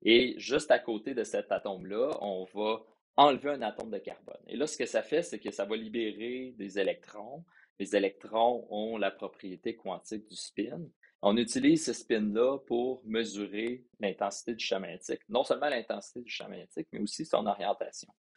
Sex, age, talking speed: male, 30-49, 180 wpm